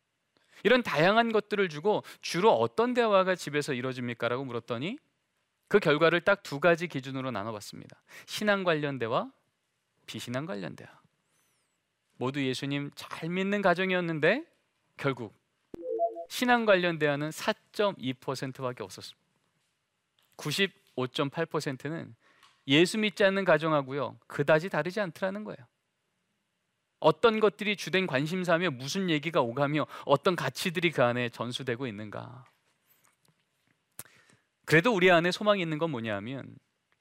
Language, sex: Korean, male